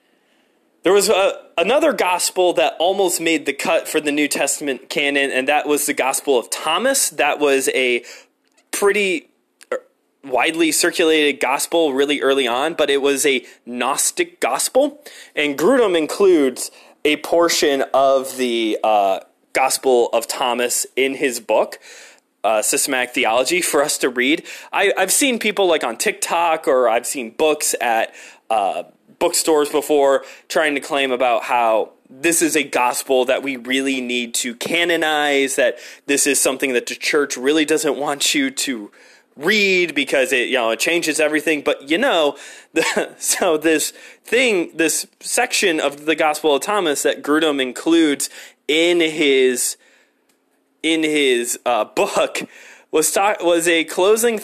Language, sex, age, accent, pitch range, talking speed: English, male, 20-39, American, 140-190 Hz, 150 wpm